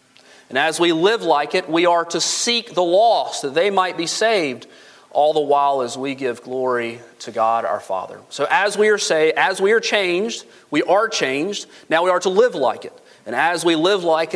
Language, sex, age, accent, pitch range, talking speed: English, male, 30-49, American, 140-195 Hz, 215 wpm